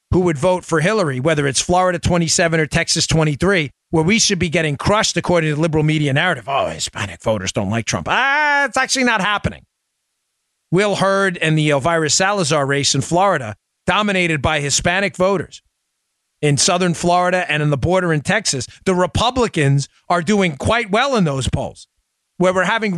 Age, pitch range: 40-59, 120-175 Hz